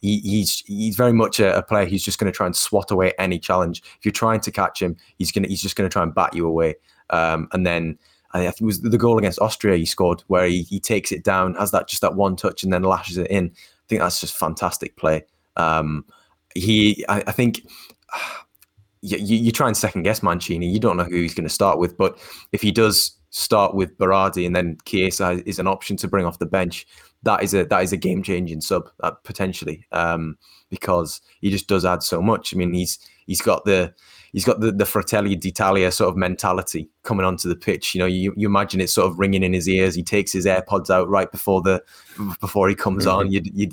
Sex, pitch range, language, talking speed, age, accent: male, 90-105 Hz, English, 235 wpm, 20-39, British